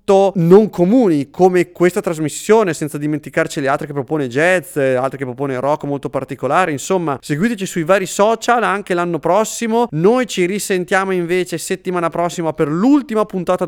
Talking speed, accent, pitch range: 155 wpm, Italian, 150-185 Hz